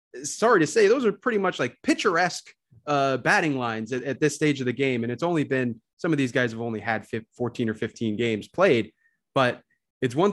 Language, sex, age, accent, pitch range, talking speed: English, male, 30-49, American, 115-155 Hz, 225 wpm